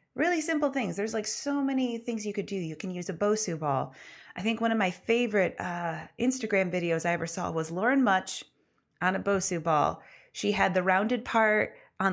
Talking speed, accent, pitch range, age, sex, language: 210 wpm, American, 160-215 Hz, 30-49, female, English